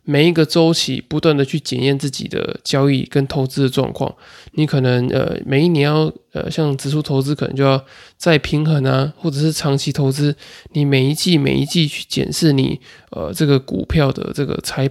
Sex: male